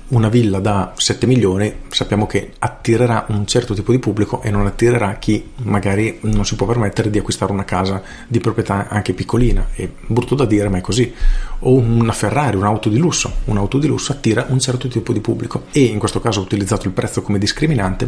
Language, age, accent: Italian, 40-59, native